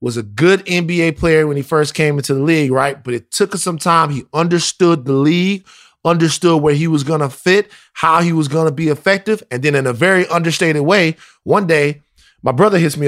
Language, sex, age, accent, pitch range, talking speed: English, male, 20-39, American, 145-205 Hz, 230 wpm